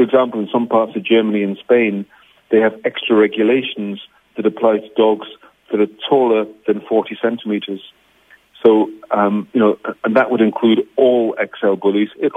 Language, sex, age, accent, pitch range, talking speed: English, male, 40-59, British, 105-120 Hz, 170 wpm